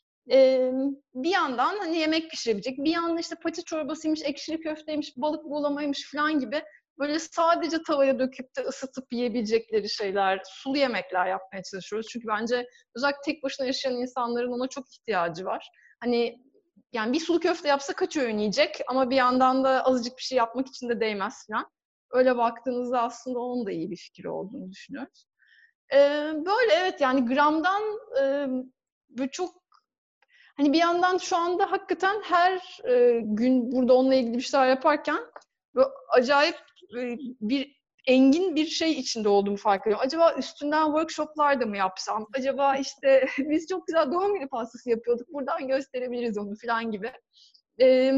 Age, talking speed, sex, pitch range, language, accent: 30-49, 155 wpm, female, 245-310 Hz, Turkish, native